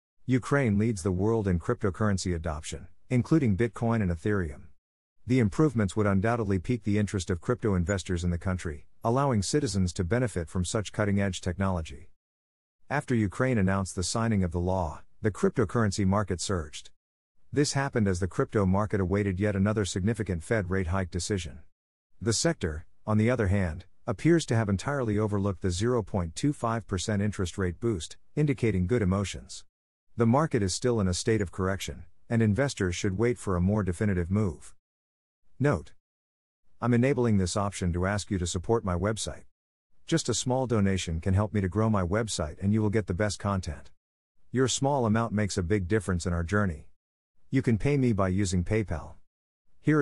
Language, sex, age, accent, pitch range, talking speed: English, male, 50-69, American, 90-115 Hz, 170 wpm